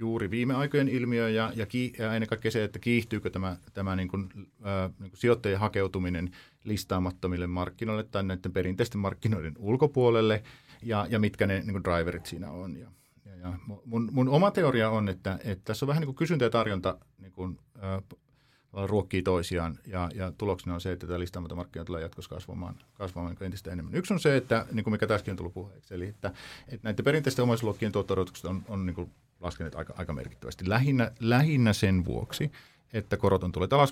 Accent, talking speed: native, 190 wpm